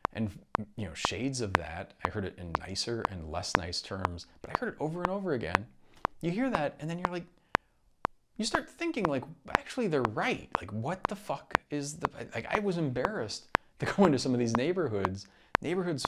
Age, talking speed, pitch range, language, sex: 30-49, 205 wpm, 95-140 Hz, Ukrainian, male